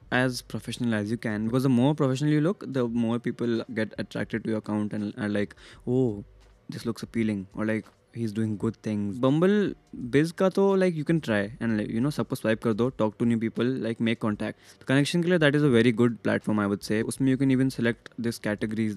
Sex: male